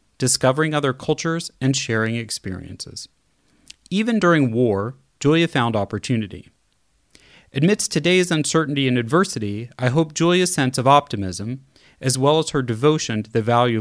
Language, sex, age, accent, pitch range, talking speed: English, male, 30-49, American, 110-150 Hz, 135 wpm